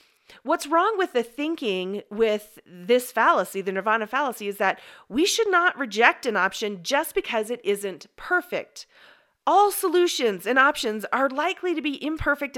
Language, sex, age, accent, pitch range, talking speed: English, female, 40-59, American, 205-305 Hz, 155 wpm